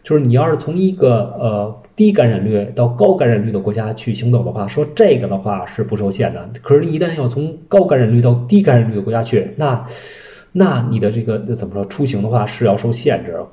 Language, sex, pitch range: Chinese, male, 110-155 Hz